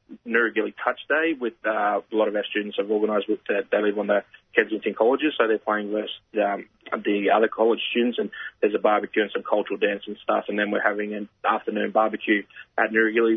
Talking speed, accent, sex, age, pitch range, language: 210 wpm, Australian, male, 20-39, 105-125 Hz, English